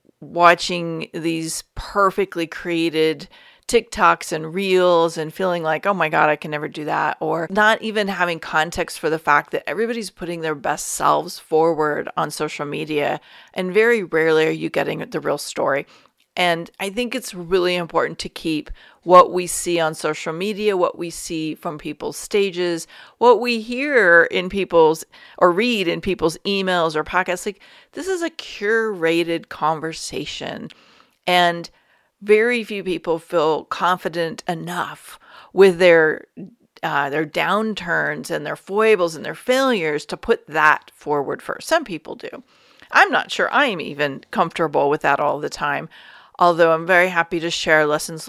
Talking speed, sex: 155 wpm, female